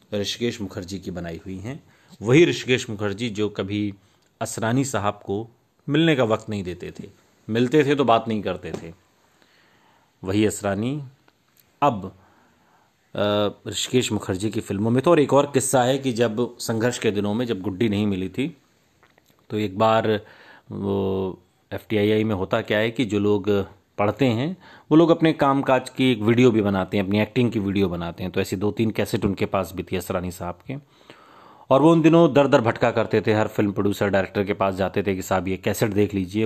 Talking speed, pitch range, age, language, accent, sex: 195 wpm, 100-125 Hz, 40-59, Hindi, native, male